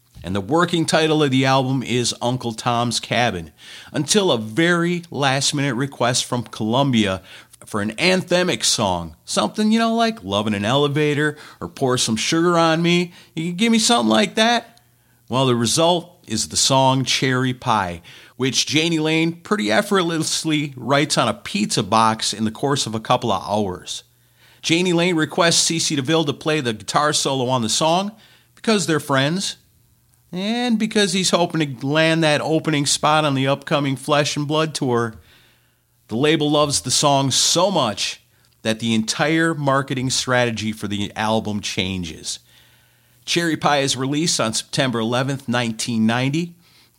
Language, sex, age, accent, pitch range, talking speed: English, male, 50-69, American, 115-155 Hz, 160 wpm